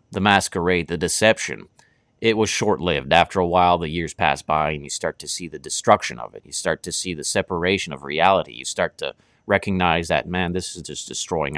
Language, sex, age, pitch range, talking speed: English, male, 30-49, 80-110 Hz, 210 wpm